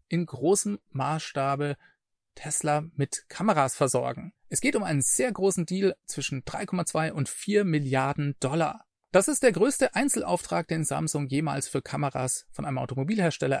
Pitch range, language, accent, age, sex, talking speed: 140-190 Hz, German, German, 40-59, male, 145 wpm